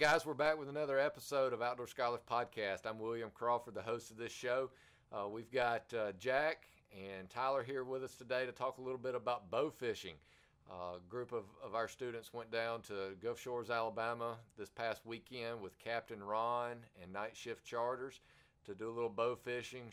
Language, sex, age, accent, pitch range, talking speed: English, male, 40-59, American, 105-120 Hz, 200 wpm